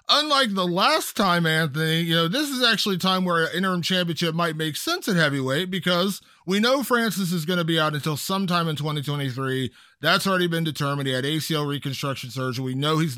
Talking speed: 210 wpm